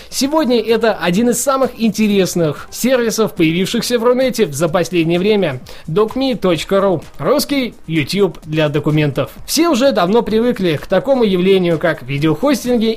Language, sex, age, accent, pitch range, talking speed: Russian, male, 20-39, native, 170-230 Hz, 125 wpm